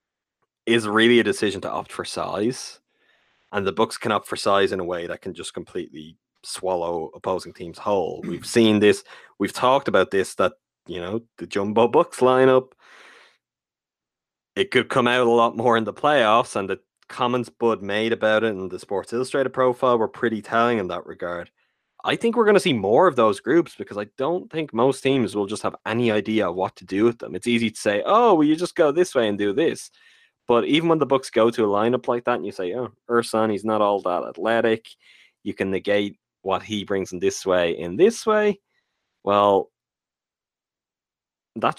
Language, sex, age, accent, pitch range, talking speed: English, male, 20-39, Irish, 100-130 Hz, 205 wpm